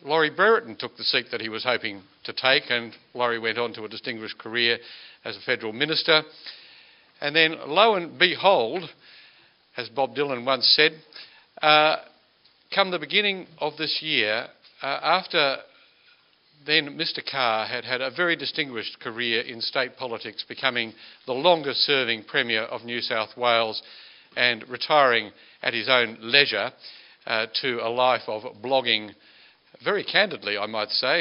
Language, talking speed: English, 150 wpm